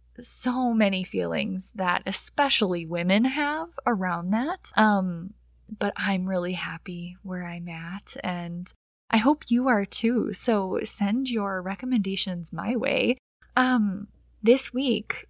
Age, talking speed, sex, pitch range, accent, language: 10-29, 125 wpm, female, 190-245 Hz, American, English